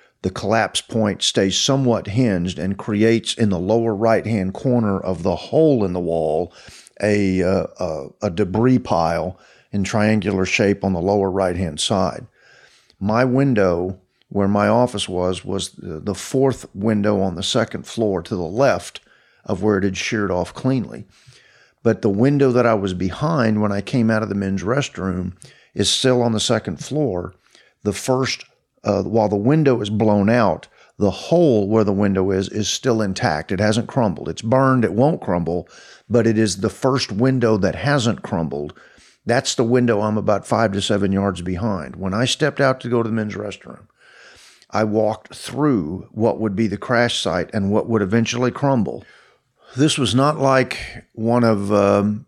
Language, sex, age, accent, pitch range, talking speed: English, male, 50-69, American, 95-120 Hz, 175 wpm